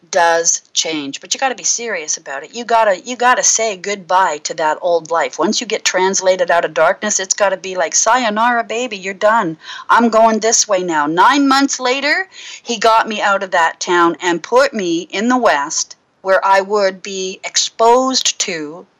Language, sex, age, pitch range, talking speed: English, female, 40-59, 185-245 Hz, 200 wpm